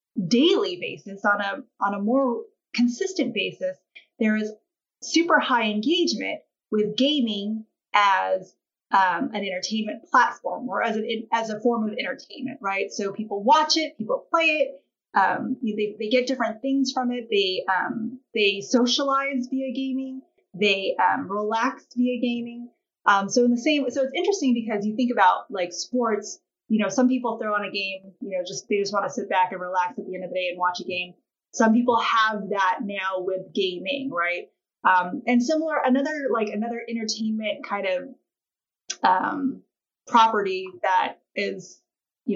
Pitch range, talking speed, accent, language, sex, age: 195-260 Hz, 170 wpm, American, English, female, 30-49